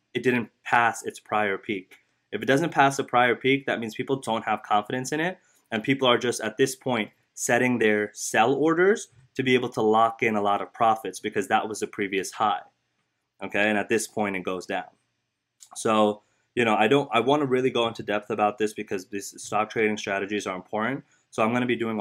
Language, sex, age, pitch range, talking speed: English, male, 20-39, 105-130 Hz, 225 wpm